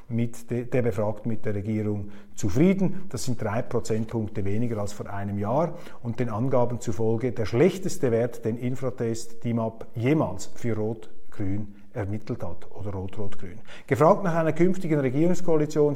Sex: male